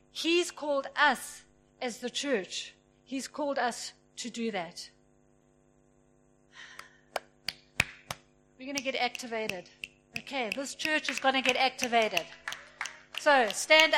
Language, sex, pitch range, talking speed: English, female, 255-340 Hz, 115 wpm